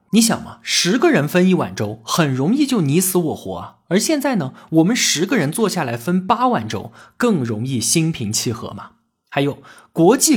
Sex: male